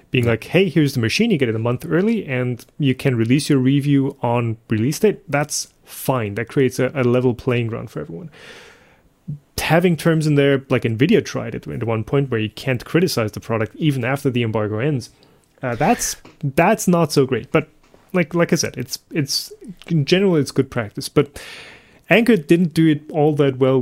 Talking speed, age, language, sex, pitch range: 200 wpm, 30-49, English, male, 115-150 Hz